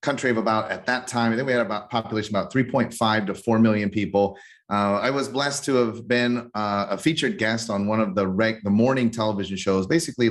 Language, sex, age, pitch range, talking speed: English, male, 30-49, 110-165 Hz, 225 wpm